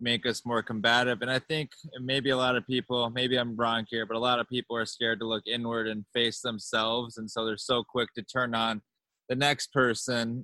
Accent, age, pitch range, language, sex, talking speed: American, 20-39, 115-135 Hz, English, male, 230 wpm